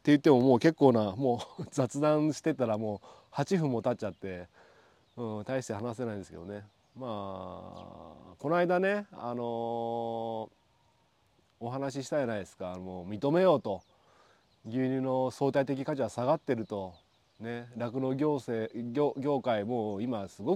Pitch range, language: 110-150 Hz, Japanese